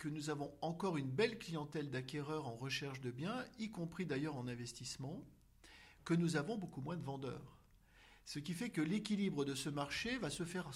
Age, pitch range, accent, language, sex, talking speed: 50-69, 135-190 Hz, French, French, male, 195 wpm